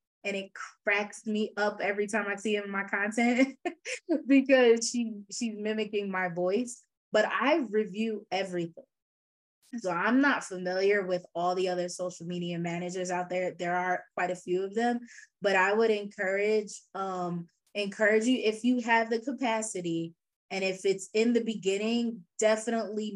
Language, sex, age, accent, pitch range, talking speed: English, female, 20-39, American, 180-225 Hz, 160 wpm